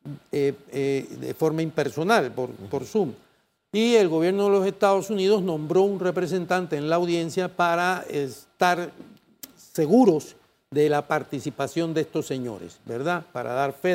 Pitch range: 140-185 Hz